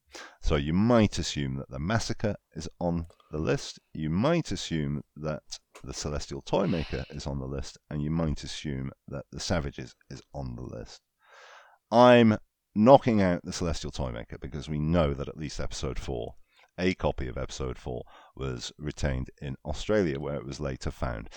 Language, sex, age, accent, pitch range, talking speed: English, male, 40-59, British, 70-90 Hz, 175 wpm